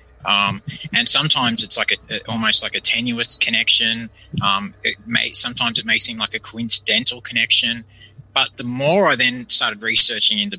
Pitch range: 105-125 Hz